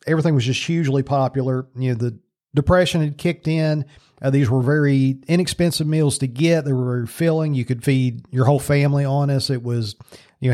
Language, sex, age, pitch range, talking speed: English, male, 40-59, 130-160 Hz, 205 wpm